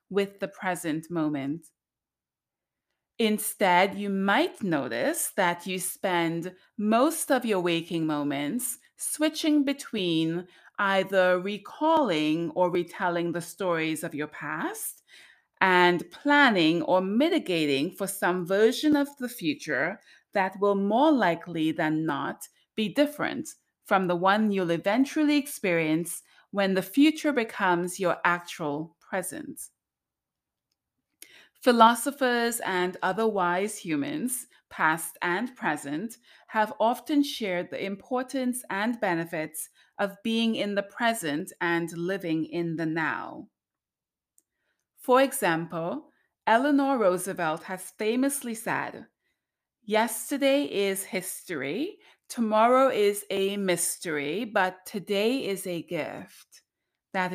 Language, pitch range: English, 170-245 Hz